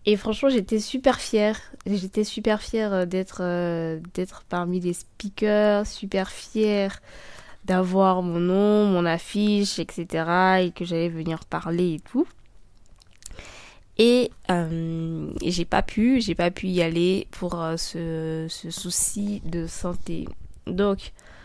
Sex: female